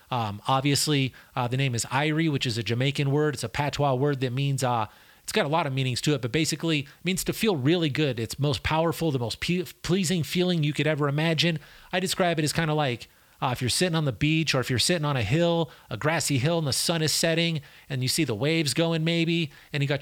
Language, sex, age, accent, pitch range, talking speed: English, male, 30-49, American, 135-160 Hz, 250 wpm